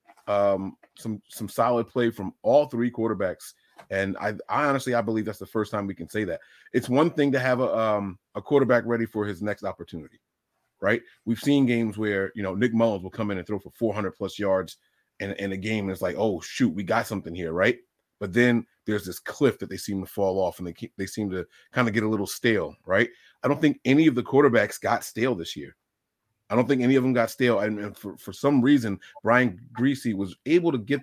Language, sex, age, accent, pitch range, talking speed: English, male, 30-49, American, 100-135 Hz, 235 wpm